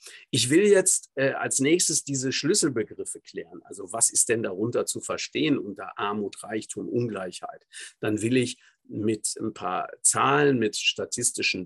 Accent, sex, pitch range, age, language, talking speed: German, male, 110-140 Hz, 50-69, German, 150 wpm